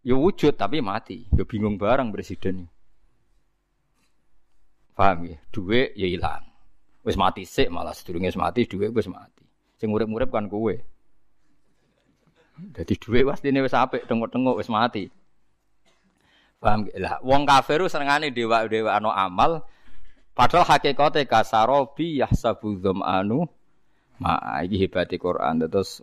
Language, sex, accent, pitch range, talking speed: Indonesian, male, native, 100-125 Hz, 130 wpm